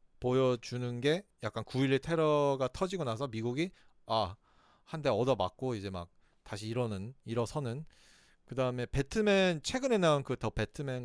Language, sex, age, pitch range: Korean, male, 40-59, 110-150 Hz